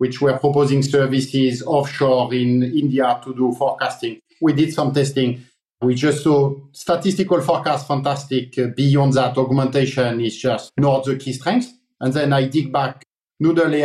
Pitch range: 135-165 Hz